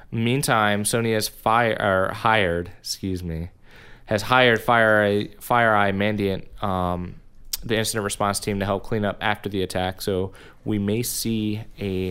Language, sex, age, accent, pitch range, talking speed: English, male, 20-39, American, 100-120 Hz, 145 wpm